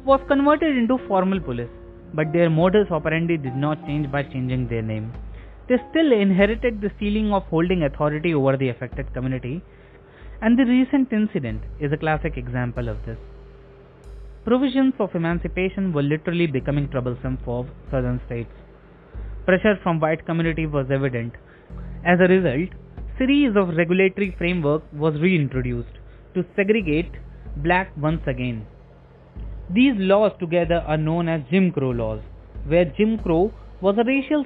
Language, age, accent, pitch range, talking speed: English, 20-39, Indian, 125-185 Hz, 145 wpm